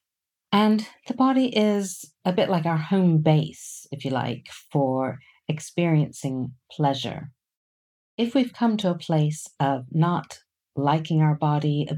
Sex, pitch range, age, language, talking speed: female, 135-170 Hz, 50-69, English, 140 wpm